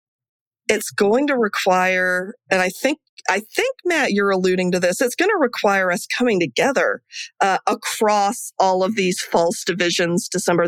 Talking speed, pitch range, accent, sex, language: 165 wpm, 175-245 Hz, American, female, English